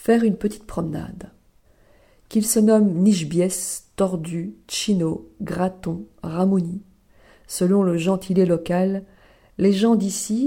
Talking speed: 110 wpm